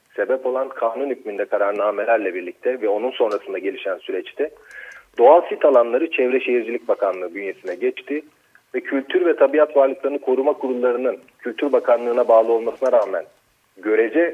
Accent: native